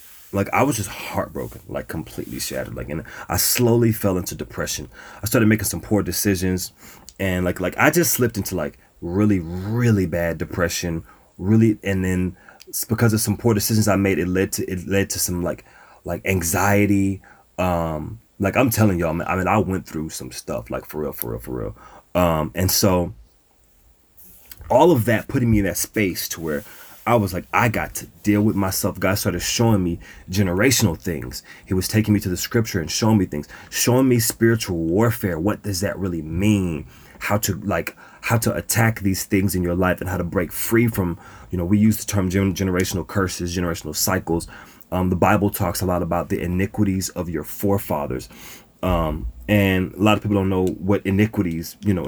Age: 30-49